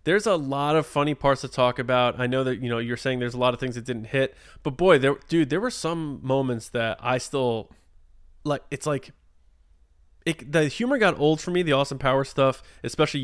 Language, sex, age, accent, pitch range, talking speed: English, male, 20-39, American, 120-175 Hz, 225 wpm